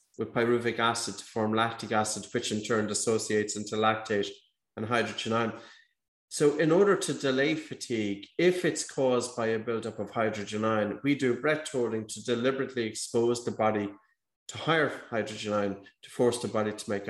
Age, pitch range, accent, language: 30-49, 110-135 Hz, Irish, English